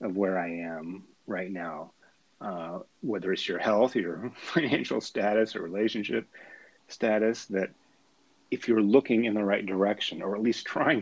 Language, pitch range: English, 95-120 Hz